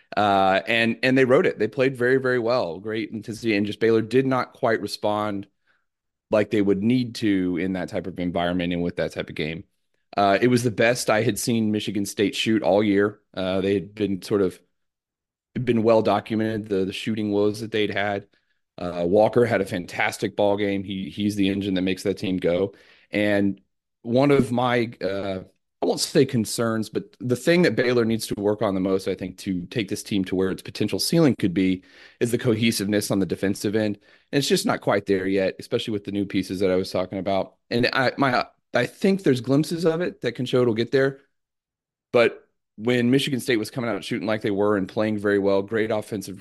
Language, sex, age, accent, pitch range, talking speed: English, male, 30-49, American, 95-115 Hz, 220 wpm